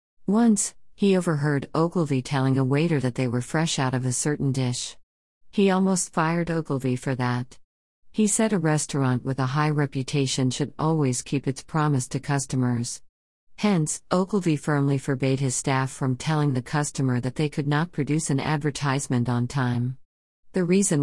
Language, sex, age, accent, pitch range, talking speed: English, female, 50-69, American, 130-155 Hz, 165 wpm